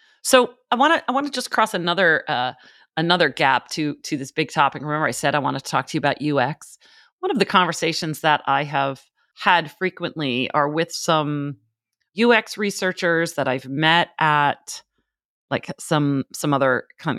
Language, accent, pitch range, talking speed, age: English, American, 145-170 Hz, 175 wpm, 40-59